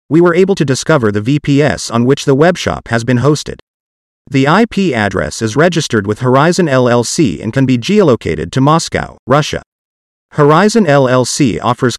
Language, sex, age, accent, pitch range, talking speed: English, male, 40-59, American, 115-160 Hz, 160 wpm